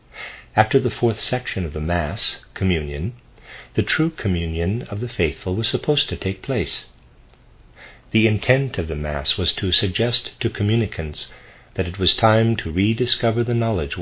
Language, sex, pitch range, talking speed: English, male, 80-110 Hz, 160 wpm